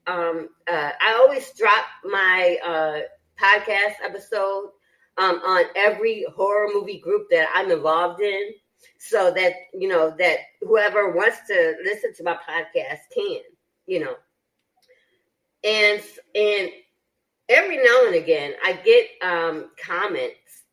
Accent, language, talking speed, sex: American, English, 125 wpm, female